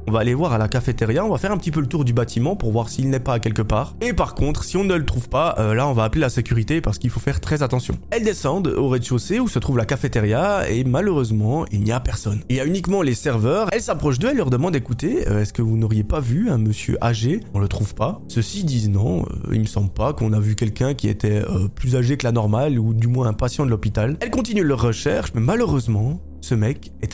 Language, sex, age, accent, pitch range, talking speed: French, male, 20-39, French, 110-155 Hz, 275 wpm